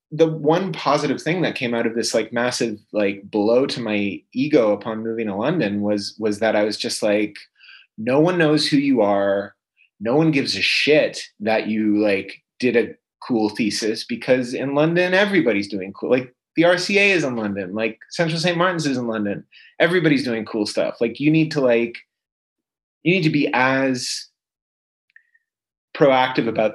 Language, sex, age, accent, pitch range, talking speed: English, male, 30-49, American, 105-145 Hz, 180 wpm